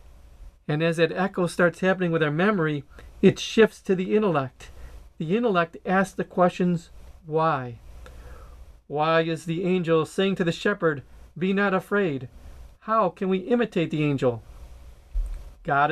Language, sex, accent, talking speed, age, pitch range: English, male, American, 145 wpm, 40-59, 130-190 Hz